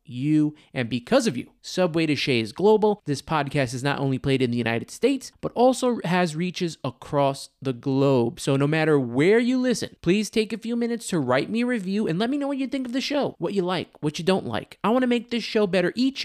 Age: 20-39